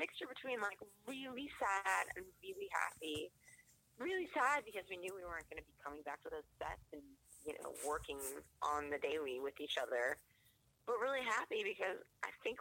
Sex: female